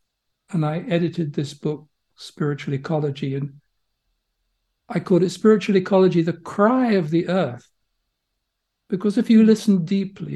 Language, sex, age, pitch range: English, male, 60-79, 155-195 Hz